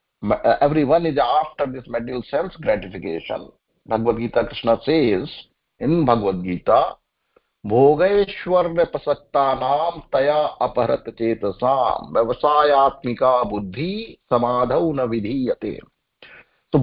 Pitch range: 125-165 Hz